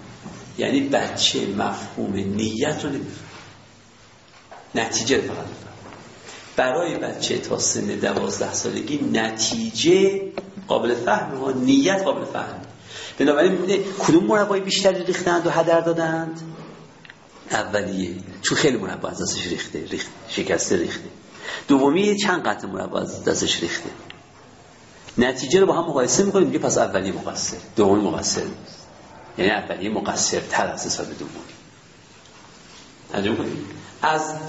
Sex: male